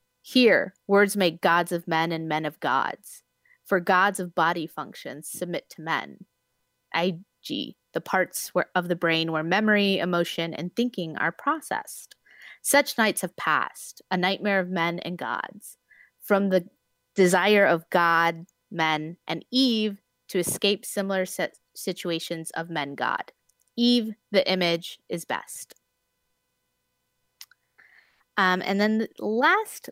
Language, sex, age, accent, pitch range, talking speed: English, female, 20-39, American, 165-200 Hz, 130 wpm